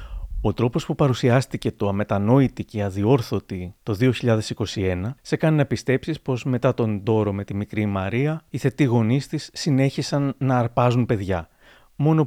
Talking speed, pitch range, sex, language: 150 wpm, 110-135 Hz, male, Greek